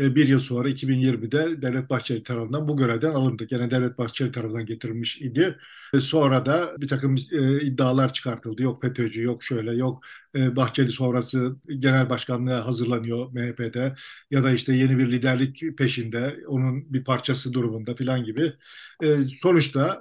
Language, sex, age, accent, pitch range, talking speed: Turkish, male, 50-69, native, 130-150 Hz, 145 wpm